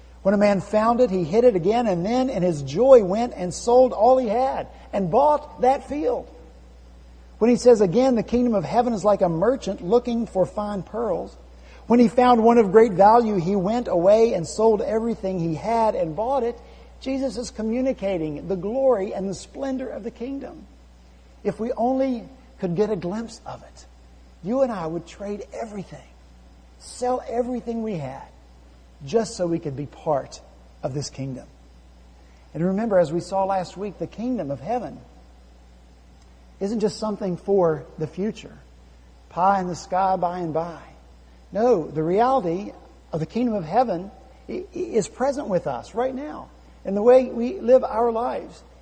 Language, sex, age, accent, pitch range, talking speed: English, male, 50-69, American, 140-235 Hz, 175 wpm